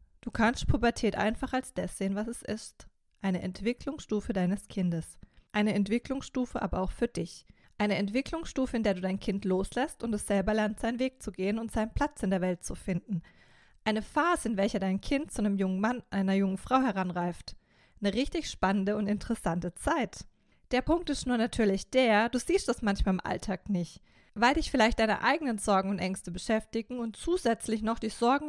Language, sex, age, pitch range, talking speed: German, female, 20-39, 195-245 Hz, 190 wpm